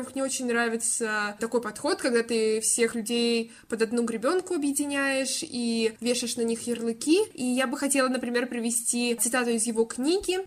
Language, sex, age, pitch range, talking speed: Russian, female, 20-39, 230-265 Hz, 160 wpm